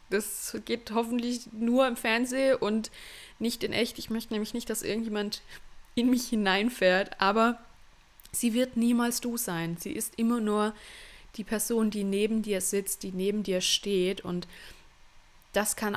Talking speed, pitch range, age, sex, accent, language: 160 wpm, 180-215 Hz, 20-39, female, German, German